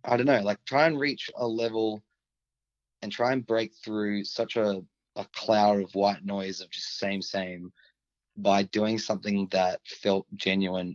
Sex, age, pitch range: male, 20-39, 95-105 Hz